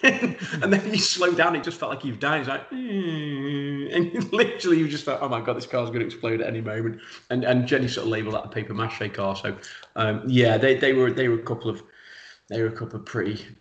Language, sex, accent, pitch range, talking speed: English, male, British, 110-130 Hz, 245 wpm